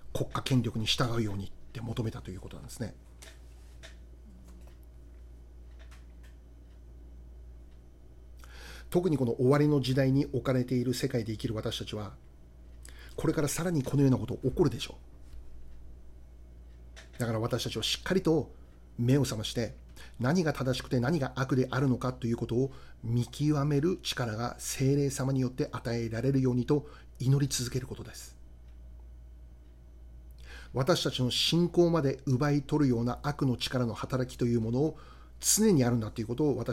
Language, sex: Japanese, male